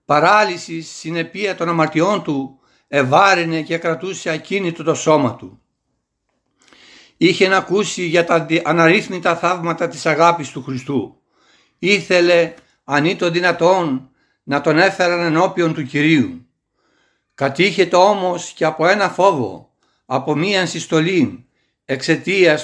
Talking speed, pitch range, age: 115 wpm, 150-185 Hz, 60-79